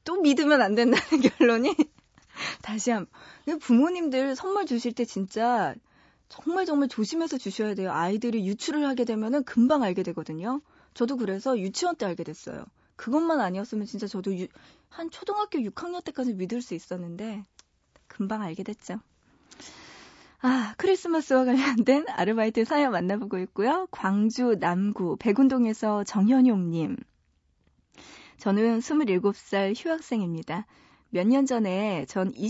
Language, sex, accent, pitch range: Korean, female, native, 195-270 Hz